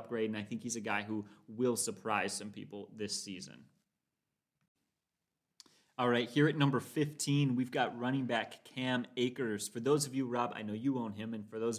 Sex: male